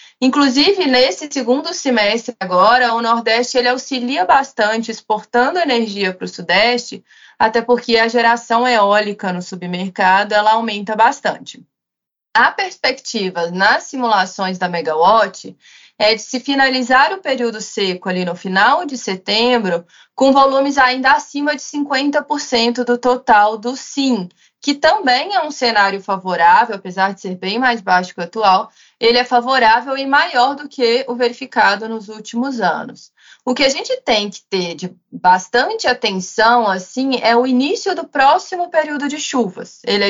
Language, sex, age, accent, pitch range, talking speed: Portuguese, female, 20-39, Brazilian, 200-260 Hz, 150 wpm